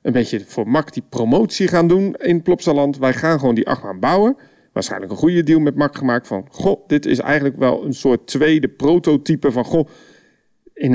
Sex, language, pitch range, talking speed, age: male, Dutch, 135-180 Hz, 195 wpm, 40-59